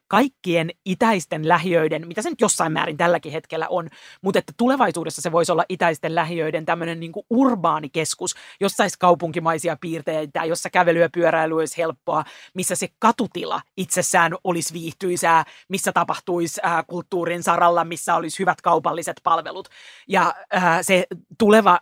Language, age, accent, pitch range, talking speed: Finnish, 30-49, native, 165-185 Hz, 140 wpm